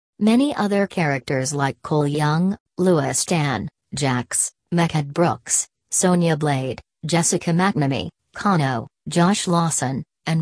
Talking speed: 110 wpm